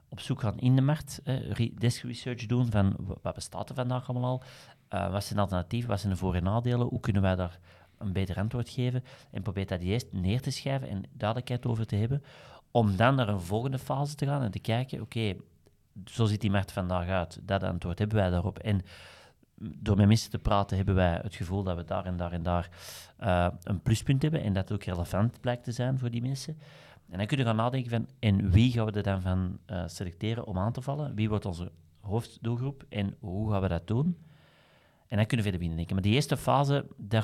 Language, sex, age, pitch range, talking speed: Dutch, male, 40-59, 95-120 Hz, 230 wpm